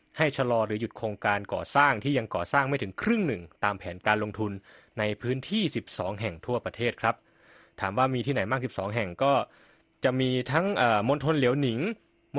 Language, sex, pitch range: Thai, male, 105-145 Hz